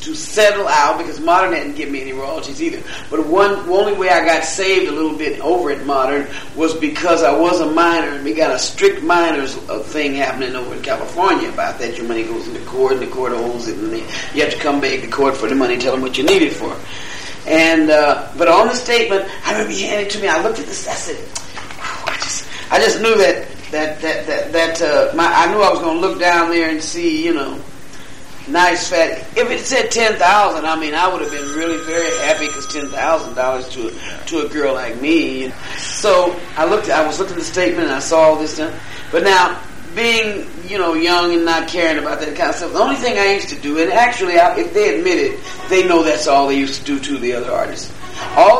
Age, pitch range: 40-59, 155-260 Hz